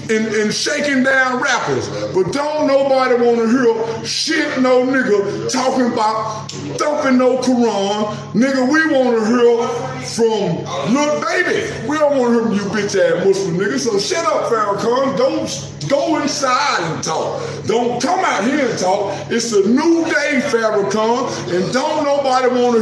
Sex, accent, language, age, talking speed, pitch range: male, American, English, 50-69, 165 wpm, 205-270 Hz